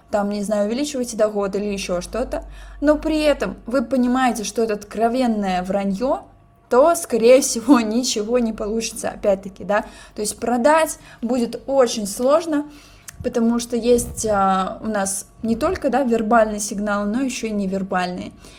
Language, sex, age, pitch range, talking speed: Russian, female, 20-39, 205-255 Hz, 150 wpm